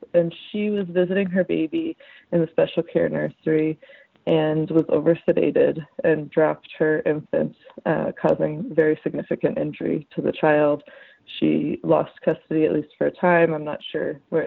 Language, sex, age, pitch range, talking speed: English, female, 20-39, 150-175 Hz, 160 wpm